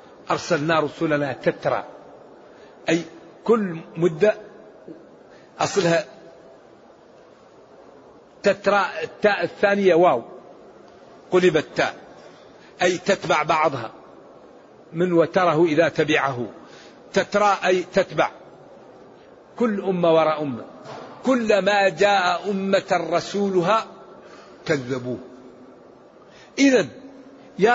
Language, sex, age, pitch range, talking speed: English, male, 50-69, 175-225 Hz, 75 wpm